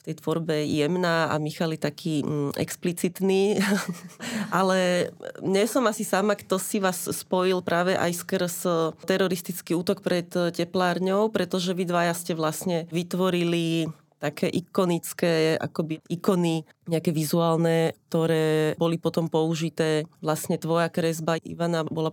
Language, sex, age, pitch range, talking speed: Slovak, female, 30-49, 160-185 Hz, 125 wpm